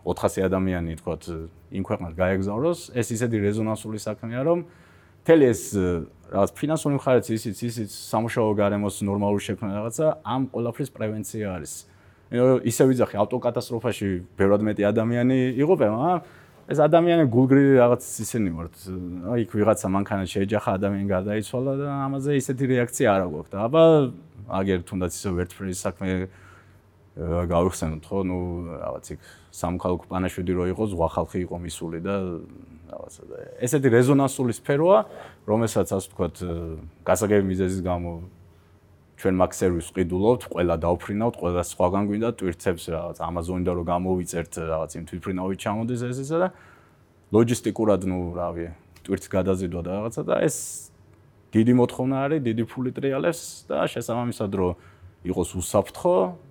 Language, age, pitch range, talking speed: English, 30-49, 90-120 Hz, 65 wpm